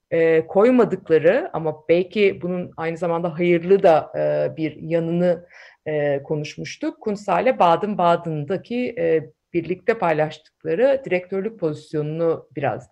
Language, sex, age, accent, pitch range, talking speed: Turkish, female, 50-69, native, 170-245 Hz, 90 wpm